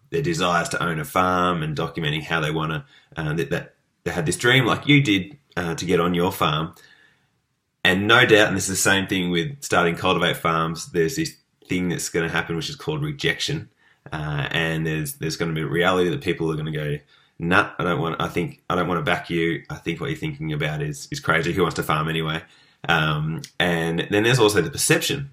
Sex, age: male, 20-39